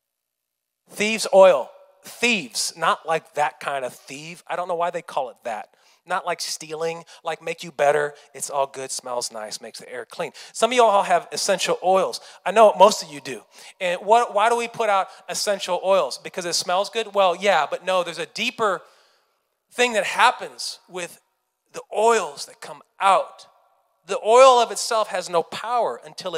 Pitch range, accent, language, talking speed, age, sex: 120-205 Hz, American, English, 185 wpm, 30-49, male